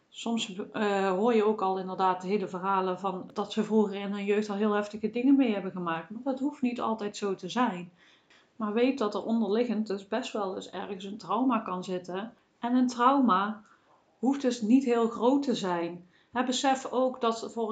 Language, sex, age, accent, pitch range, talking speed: Dutch, female, 40-59, Dutch, 200-245 Hz, 205 wpm